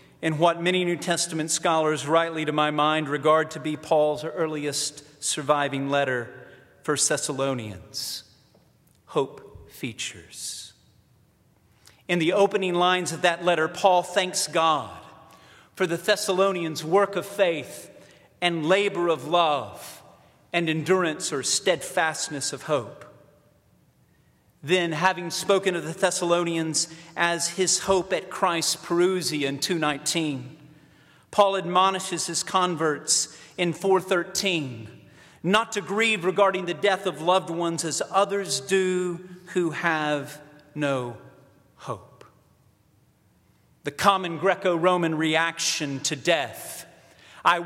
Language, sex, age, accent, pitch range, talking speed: English, male, 40-59, American, 155-185 Hz, 115 wpm